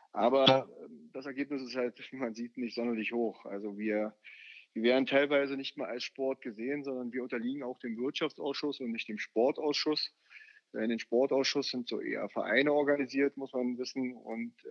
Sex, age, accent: male, 30-49, German